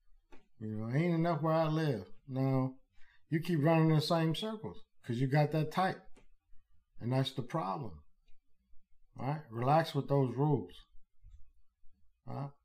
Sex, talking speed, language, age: male, 150 wpm, English, 50-69